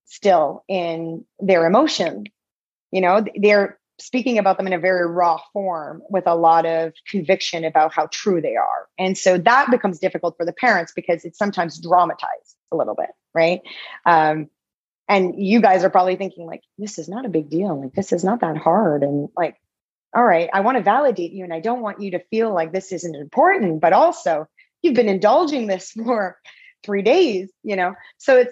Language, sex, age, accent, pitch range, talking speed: English, female, 30-49, American, 170-205 Hz, 200 wpm